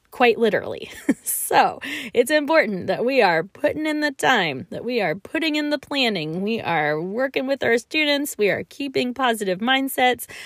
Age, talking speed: 20-39, 170 wpm